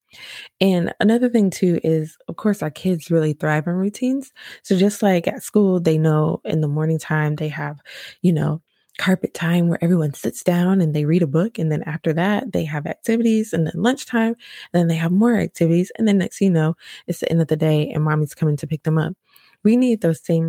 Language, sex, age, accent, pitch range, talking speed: English, female, 20-39, American, 155-190 Hz, 225 wpm